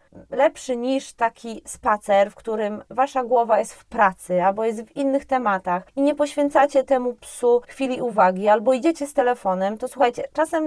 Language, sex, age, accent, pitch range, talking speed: Polish, female, 30-49, native, 215-280 Hz, 170 wpm